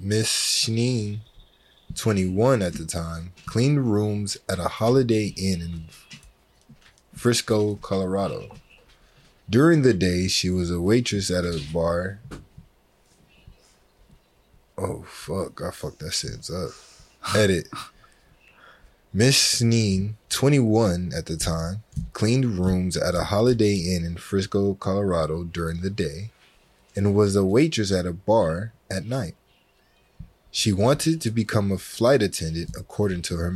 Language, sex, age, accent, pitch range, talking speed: English, male, 20-39, American, 90-115 Hz, 125 wpm